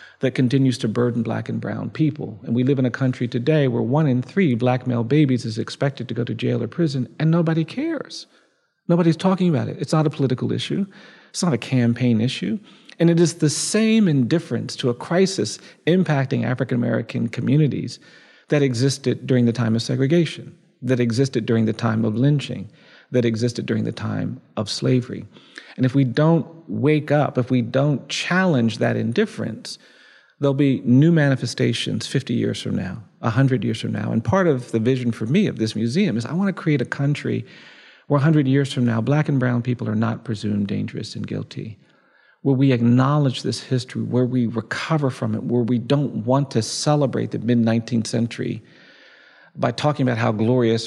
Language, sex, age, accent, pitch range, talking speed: English, male, 40-59, American, 120-150 Hz, 190 wpm